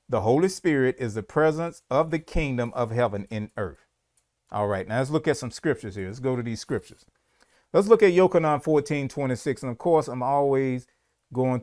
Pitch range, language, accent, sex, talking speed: 110-145 Hz, English, American, male, 200 wpm